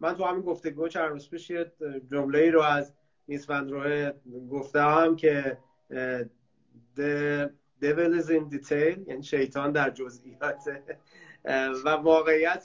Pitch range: 140-175 Hz